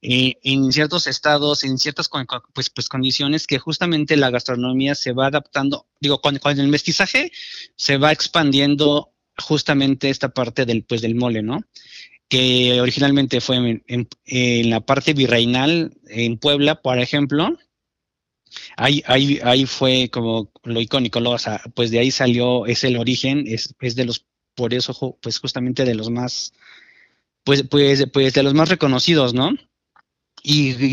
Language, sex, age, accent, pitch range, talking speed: Spanish, male, 30-49, Mexican, 125-145 Hz, 160 wpm